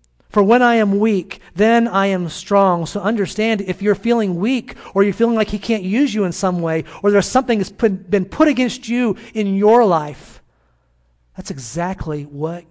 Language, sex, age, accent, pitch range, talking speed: English, male, 40-59, American, 150-205 Hz, 190 wpm